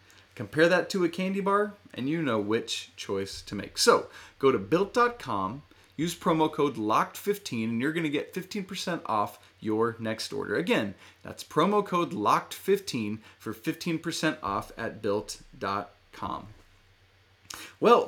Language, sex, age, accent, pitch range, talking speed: English, male, 30-49, American, 110-175 Hz, 140 wpm